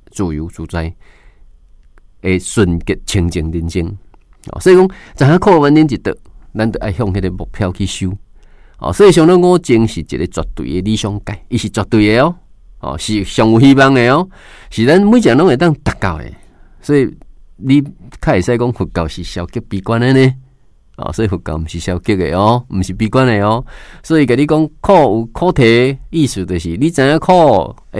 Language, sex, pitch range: Chinese, male, 90-135 Hz